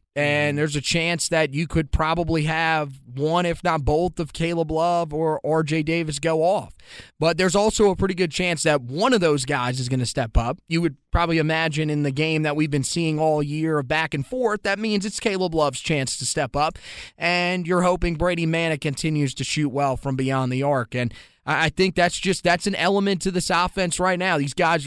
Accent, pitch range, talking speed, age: American, 140-170 Hz, 220 wpm, 20-39